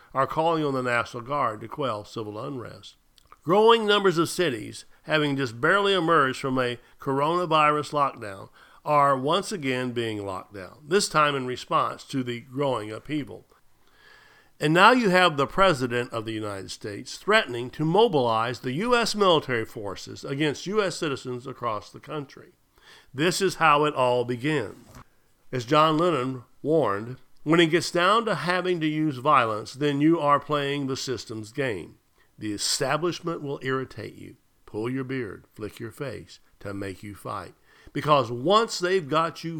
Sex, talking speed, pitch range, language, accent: male, 160 wpm, 120-165 Hz, English, American